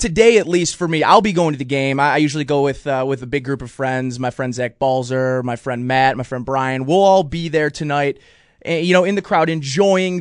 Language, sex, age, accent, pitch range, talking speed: English, male, 20-39, American, 140-180 Hz, 255 wpm